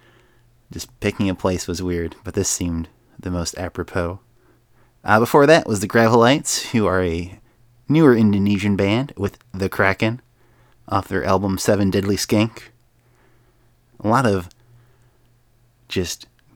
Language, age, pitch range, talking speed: English, 30-49, 95-130 Hz, 135 wpm